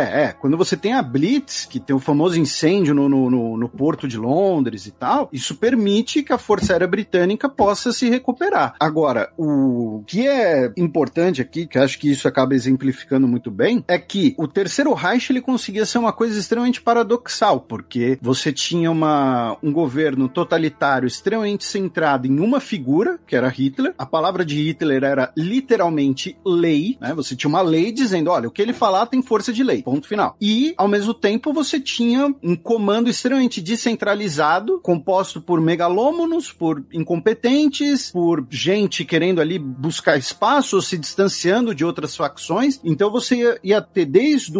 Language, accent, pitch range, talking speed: Portuguese, Brazilian, 150-235 Hz, 165 wpm